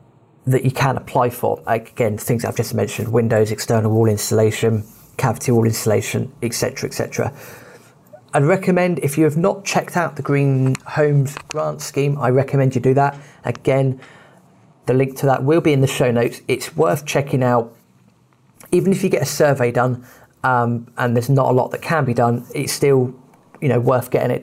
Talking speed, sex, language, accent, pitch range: 185 wpm, male, English, British, 120-140 Hz